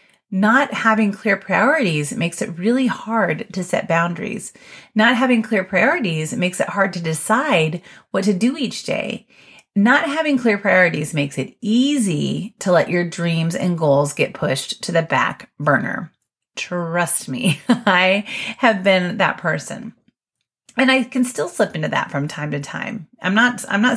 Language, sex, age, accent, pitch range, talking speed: English, female, 30-49, American, 170-230 Hz, 165 wpm